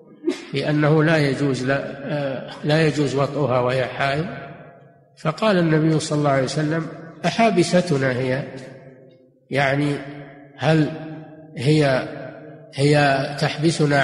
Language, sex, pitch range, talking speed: Arabic, male, 140-160 Hz, 95 wpm